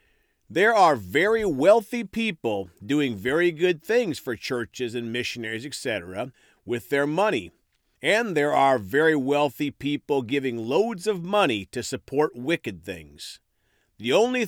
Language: English